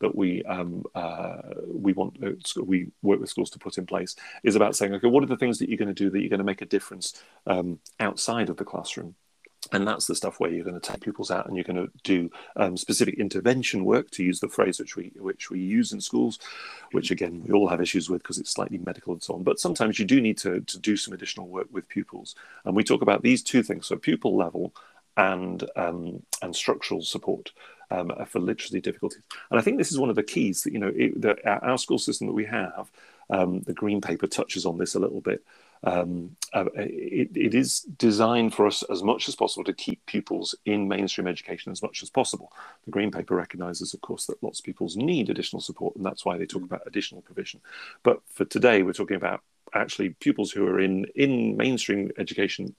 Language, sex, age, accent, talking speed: English, male, 40-59, British, 230 wpm